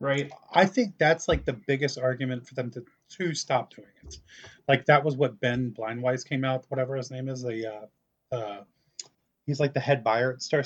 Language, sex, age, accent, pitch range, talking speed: English, male, 30-49, American, 120-140 Hz, 210 wpm